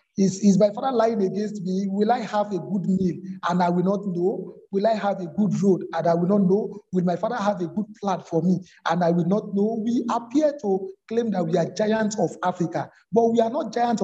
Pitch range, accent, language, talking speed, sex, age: 175-220 Hz, Nigerian, English, 250 wpm, male, 50-69